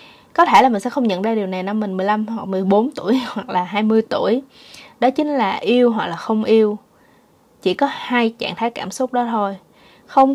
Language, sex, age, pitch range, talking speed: Vietnamese, female, 20-39, 200-275 Hz, 220 wpm